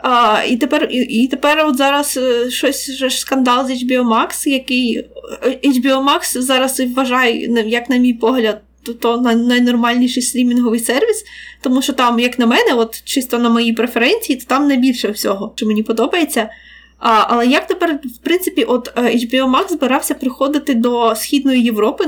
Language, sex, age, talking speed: Ukrainian, female, 20-39, 165 wpm